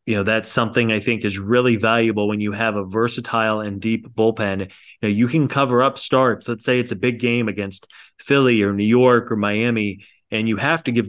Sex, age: male, 20-39